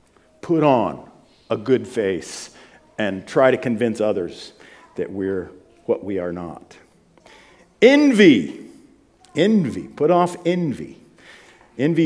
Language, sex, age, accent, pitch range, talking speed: English, male, 50-69, American, 130-180 Hz, 110 wpm